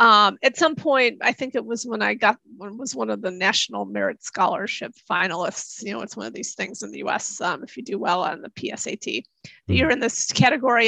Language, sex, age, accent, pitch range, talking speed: English, female, 30-49, American, 230-265 Hz, 230 wpm